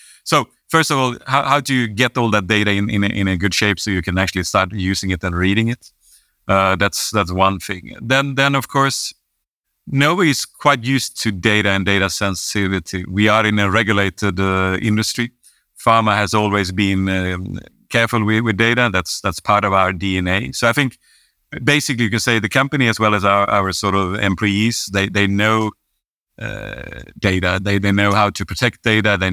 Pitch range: 95-115 Hz